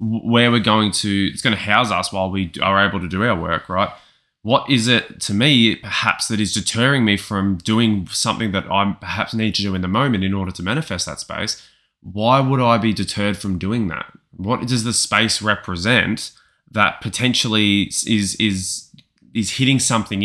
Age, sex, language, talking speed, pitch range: 20-39, male, English, 195 wpm, 95-115 Hz